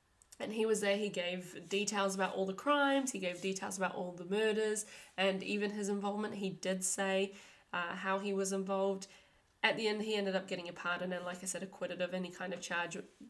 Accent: Australian